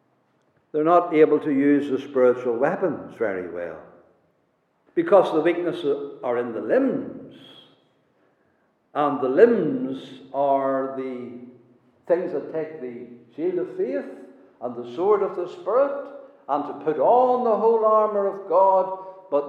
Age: 60-79